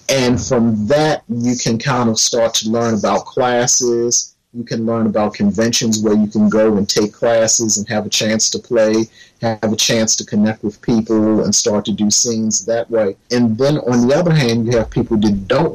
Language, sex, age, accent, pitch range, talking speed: English, male, 40-59, American, 110-120 Hz, 210 wpm